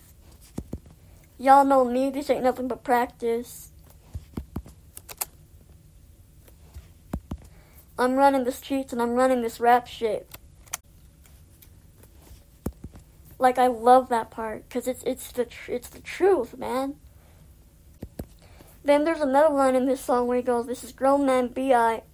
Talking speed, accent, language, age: 130 wpm, American, English, 20-39